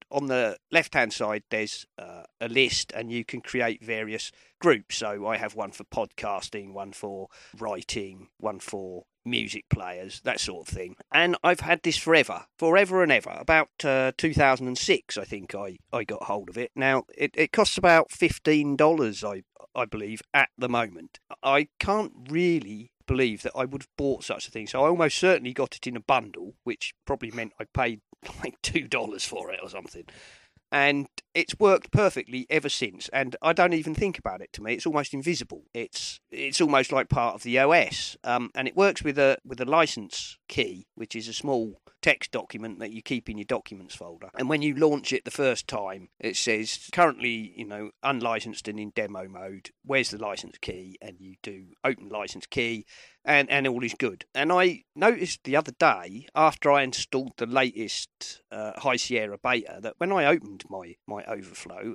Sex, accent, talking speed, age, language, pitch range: male, British, 195 wpm, 40-59, English, 110-150 Hz